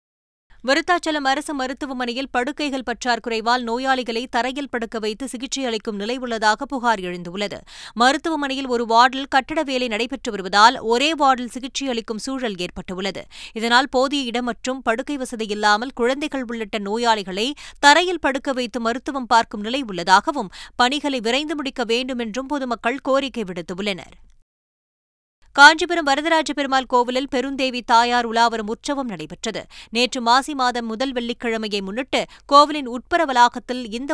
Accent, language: native, Tamil